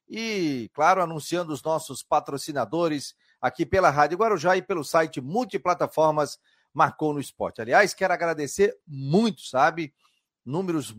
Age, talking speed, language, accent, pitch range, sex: 40-59, 125 wpm, Portuguese, Brazilian, 145-185 Hz, male